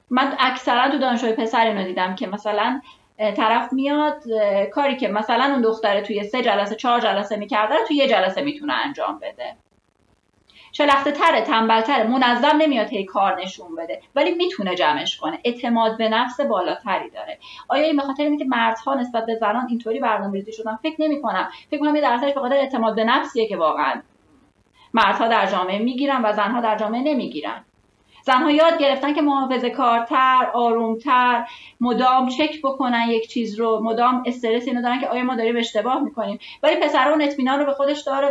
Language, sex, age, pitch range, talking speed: Persian, female, 30-49, 220-285 Hz, 170 wpm